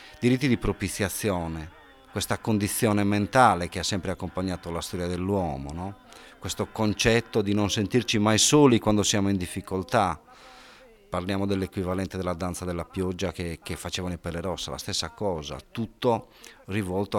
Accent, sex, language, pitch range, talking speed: native, male, Italian, 90-110 Hz, 145 wpm